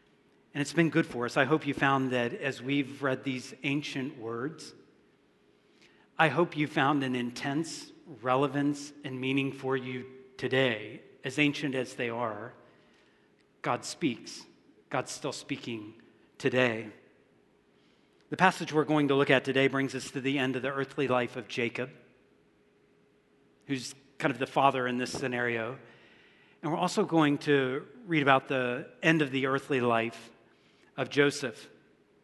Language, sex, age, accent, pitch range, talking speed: English, male, 40-59, American, 125-150 Hz, 155 wpm